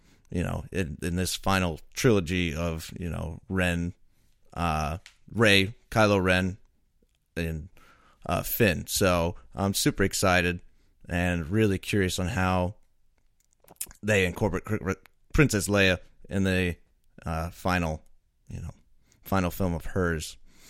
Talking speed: 120 wpm